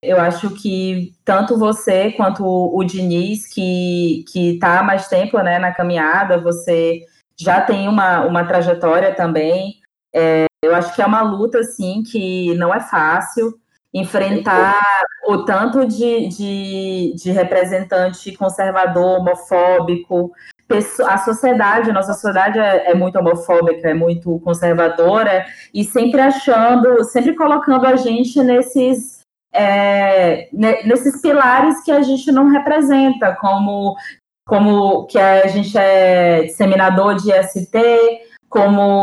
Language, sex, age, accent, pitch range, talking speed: Portuguese, female, 20-39, Brazilian, 185-235 Hz, 130 wpm